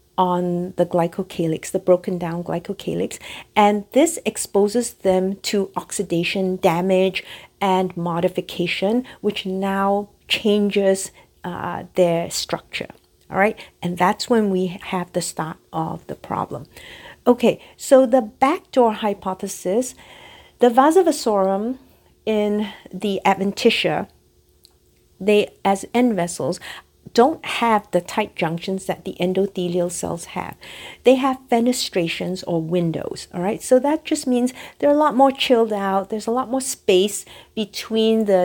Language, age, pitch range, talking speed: English, 50-69, 180-225 Hz, 130 wpm